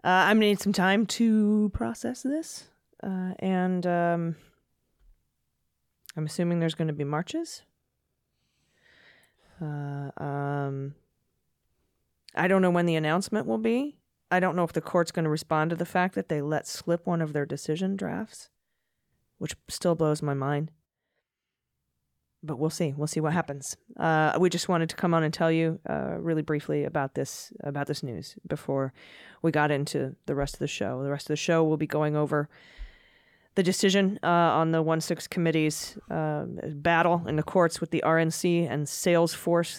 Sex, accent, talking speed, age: female, American, 175 wpm, 20-39